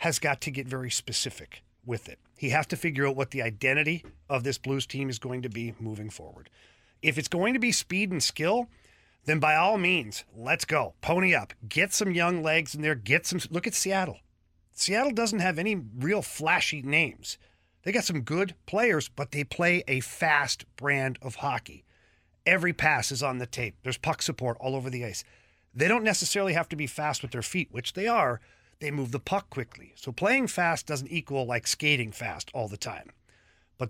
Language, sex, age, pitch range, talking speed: English, male, 40-59, 120-165 Hz, 205 wpm